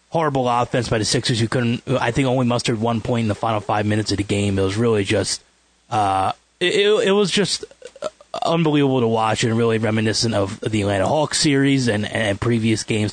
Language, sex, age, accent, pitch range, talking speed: English, male, 30-49, American, 105-130 Hz, 205 wpm